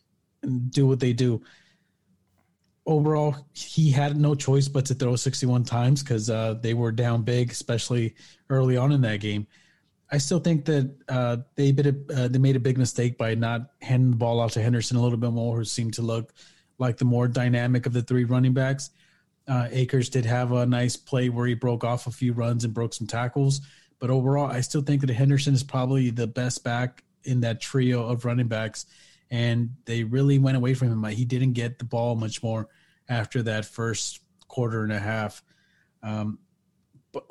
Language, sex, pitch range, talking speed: English, male, 115-135 Hz, 200 wpm